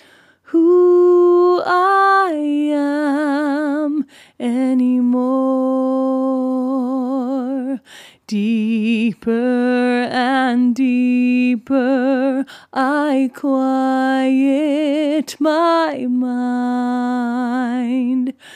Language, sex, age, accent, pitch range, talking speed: English, female, 30-49, American, 255-320 Hz, 35 wpm